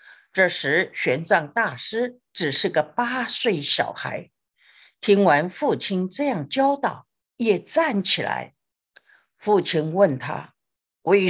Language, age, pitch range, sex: Chinese, 50-69, 175-270 Hz, female